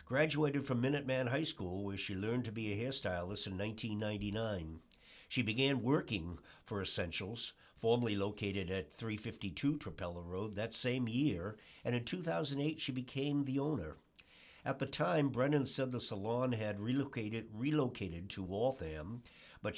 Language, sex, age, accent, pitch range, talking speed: English, male, 60-79, American, 95-130 Hz, 145 wpm